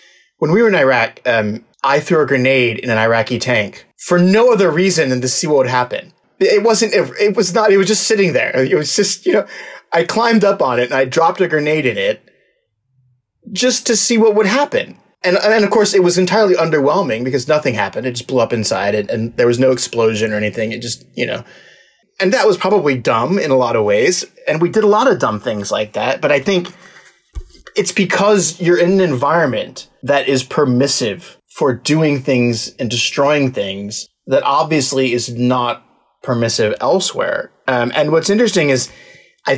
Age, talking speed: 30-49, 205 wpm